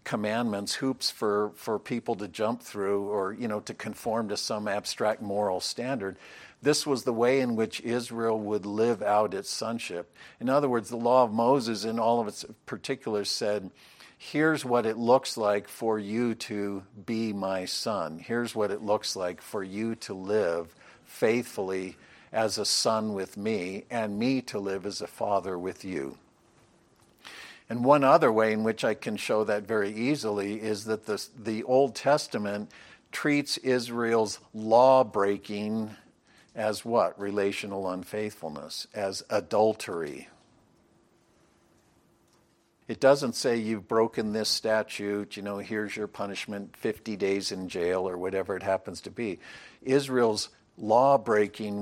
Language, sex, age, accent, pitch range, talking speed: English, male, 50-69, American, 100-115 Hz, 150 wpm